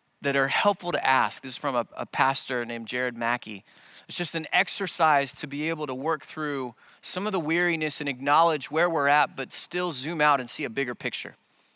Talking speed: 215 wpm